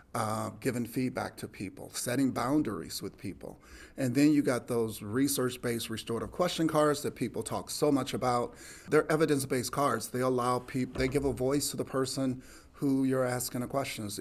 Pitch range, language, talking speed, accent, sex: 110-135 Hz, English, 175 wpm, American, male